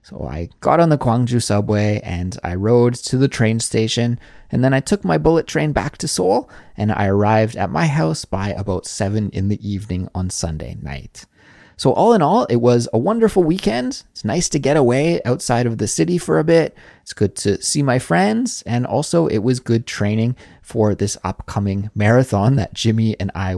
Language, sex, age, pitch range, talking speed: English, male, 20-39, 100-140 Hz, 205 wpm